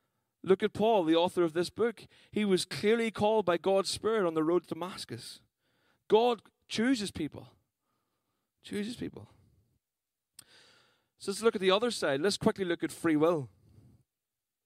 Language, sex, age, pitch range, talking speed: English, male, 20-39, 135-200 Hz, 155 wpm